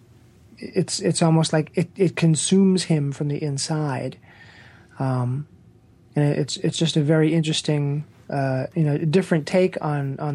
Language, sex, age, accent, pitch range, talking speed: English, male, 20-39, American, 130-160 Hz, 150 wpm